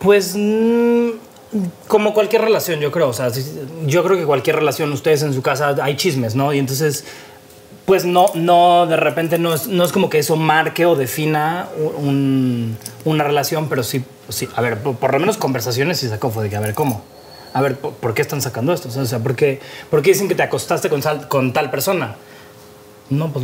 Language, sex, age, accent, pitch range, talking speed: Spanish, male, 30-49, Mexican, 130-170 Hz, 215 wpm